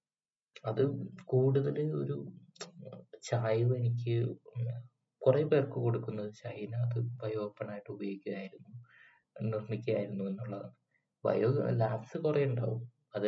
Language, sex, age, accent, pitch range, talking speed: Malayalam, male, 20-39, native, 110-130 Hz, 90 wpm